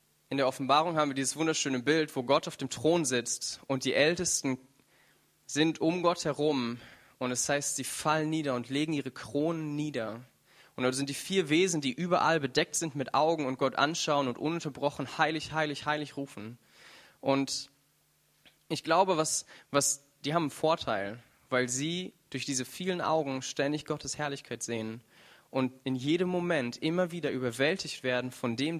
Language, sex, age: German, male, 20-39